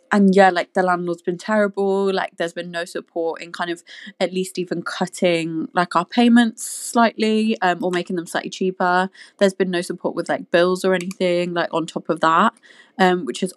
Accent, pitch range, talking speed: British, 175-200 Hz, 205 wpm